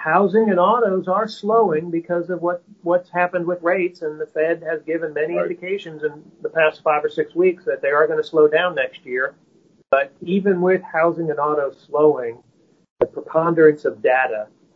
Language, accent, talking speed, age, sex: English, American, 185 wpm, 40-59, male